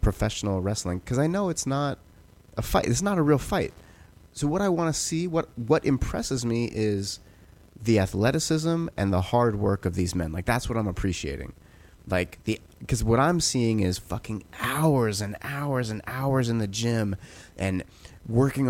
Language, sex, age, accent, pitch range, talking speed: English, male, 30-49, American, 95-120 Hz, 185 wpm